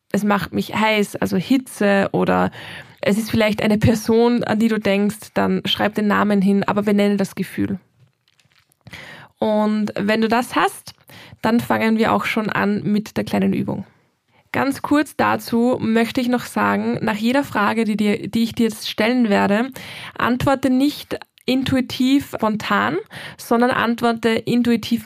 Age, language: 20-39, German